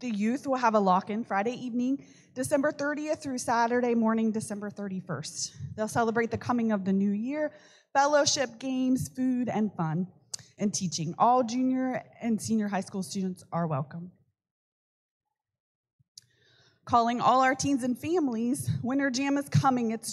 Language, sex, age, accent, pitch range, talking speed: English, female, 20-39, American, 195-255 Hz, 150 wpm